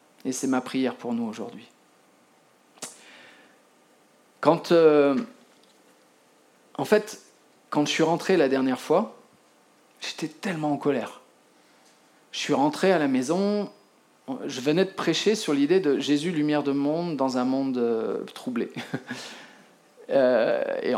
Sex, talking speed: male, 125 wpm